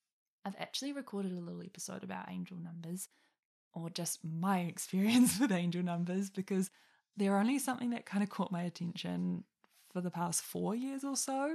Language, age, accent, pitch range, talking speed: English, 10-29, Australian, 170-230 Hz, 170 wpm